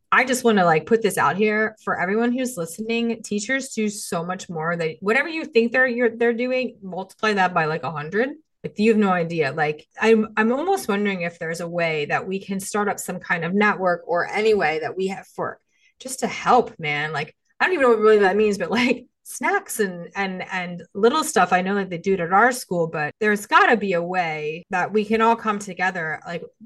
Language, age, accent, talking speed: English, 30-49, American, 235 wpm